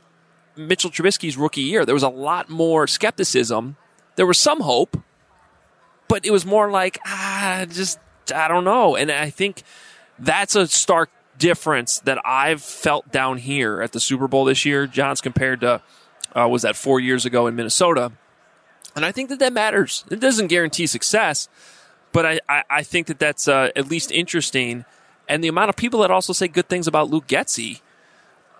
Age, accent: 30-49, American